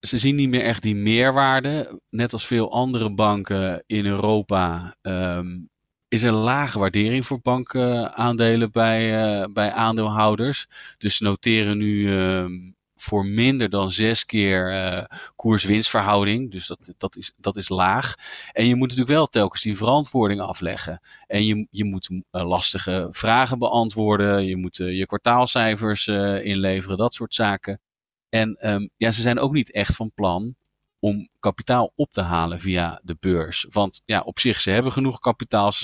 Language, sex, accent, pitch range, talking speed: Dutch, male, Dutch, 95-115 Hz, 160 wpm